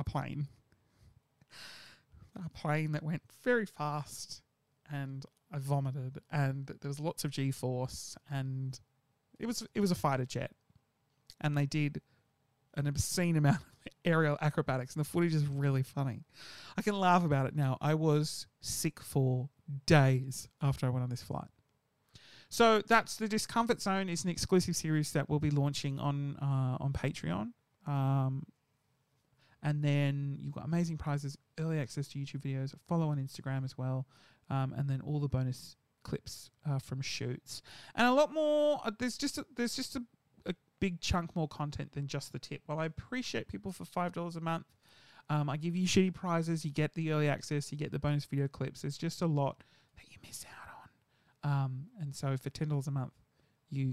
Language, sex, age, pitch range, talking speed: English, male, 30-49, 135-170 Hz, 175 wpm